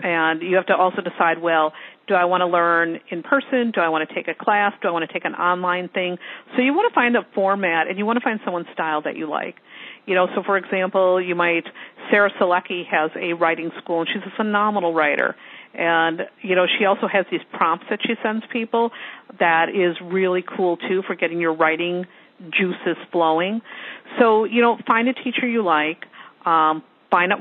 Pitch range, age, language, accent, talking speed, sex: 175-225 Hz, 50-69, English, American, 215 wpm, female